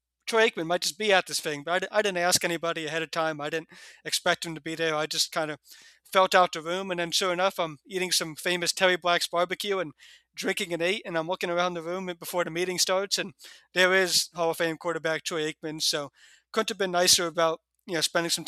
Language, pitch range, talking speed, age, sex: English, 155-175 Hz, 250 wpm, 30-49, male